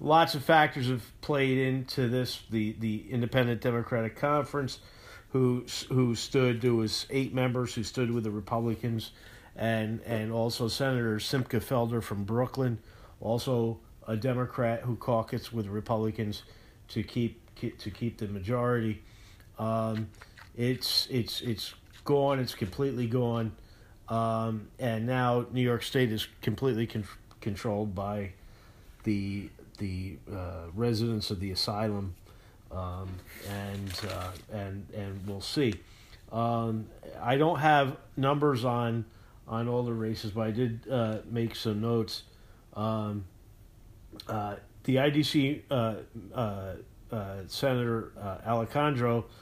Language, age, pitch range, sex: English, 50-69, 105-125 Hz, male